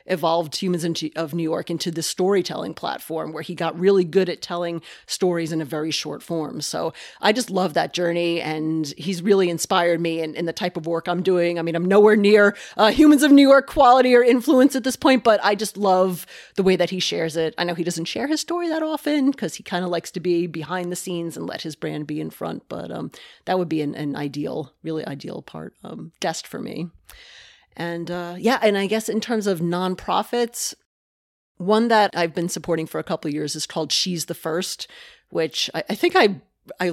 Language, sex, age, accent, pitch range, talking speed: English, female, 30-49, American, 160-195 Hz, 225 wpm